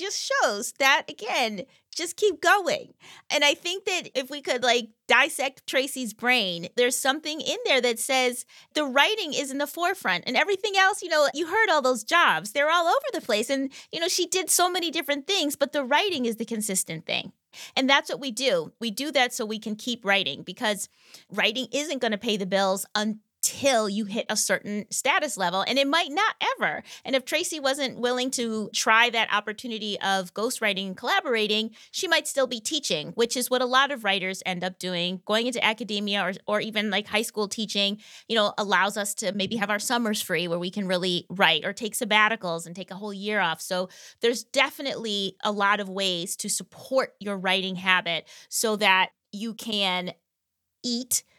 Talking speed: 205 wpm